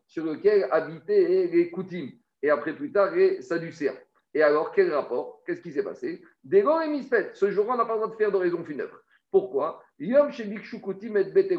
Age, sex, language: 50-69, male, French